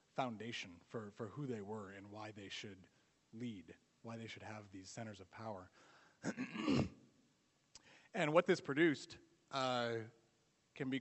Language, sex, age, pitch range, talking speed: English, male, 30-49, 115-135 Hz, 140 wpm